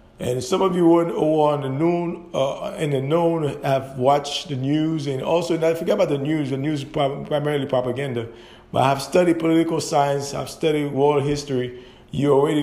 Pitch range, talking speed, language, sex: 130-150 Hz, 195 wpm, English, male